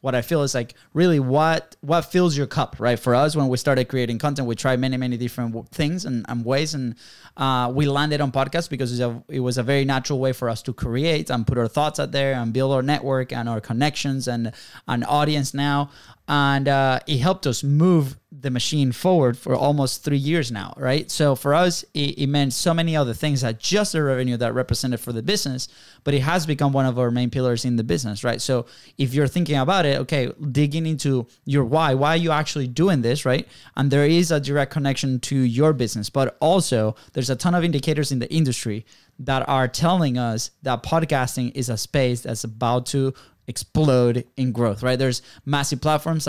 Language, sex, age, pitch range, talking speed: English, male, 20-39, 125-145 Hz, 220 wpm